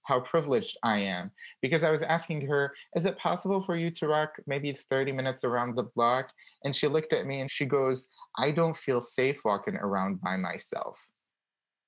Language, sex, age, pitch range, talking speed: English, male, 30-49, 110-145 Hz, 190 wpm